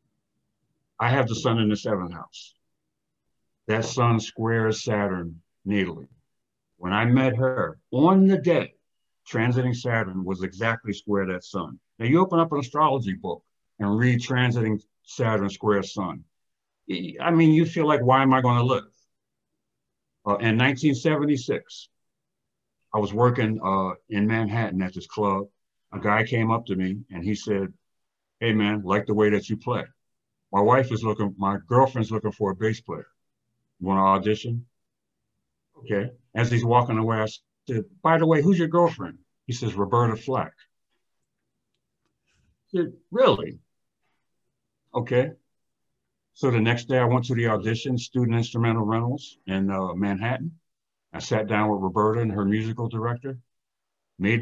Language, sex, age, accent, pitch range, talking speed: English, male, 60-79, American, 105-130 Hz, 150 wpm